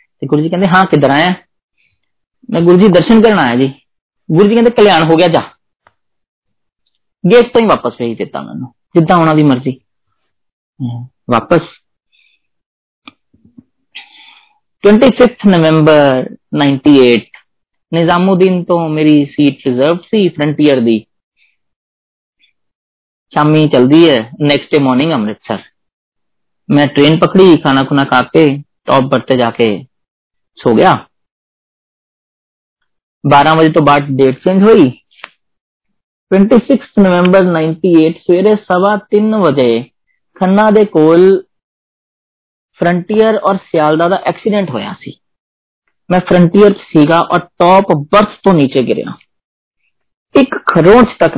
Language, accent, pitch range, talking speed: Hindi, native, 140-190 Hz, 70 wpm